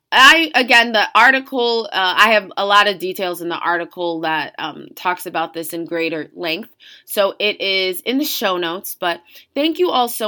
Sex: female